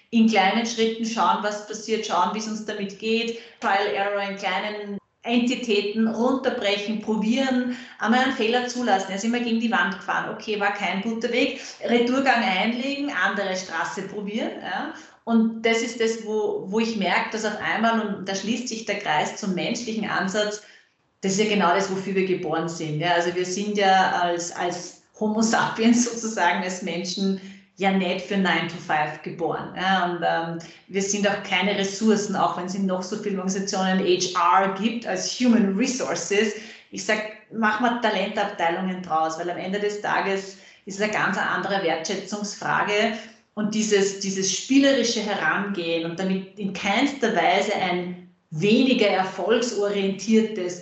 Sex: female